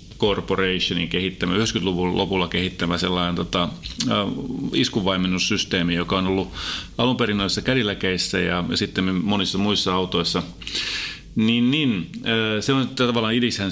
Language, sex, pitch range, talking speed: Finnish, male, 90-110 Hz, 120 wpm